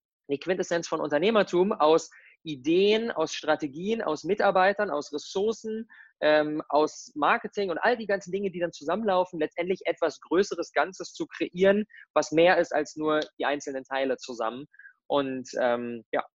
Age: 20-39